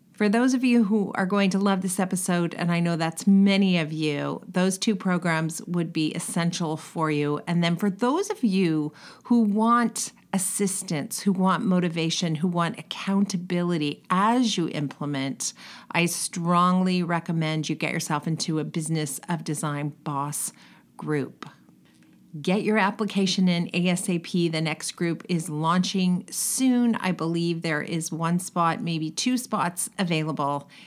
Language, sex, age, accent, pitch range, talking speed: English, female, 40-59, American, 165-210 Hz, 150 wpm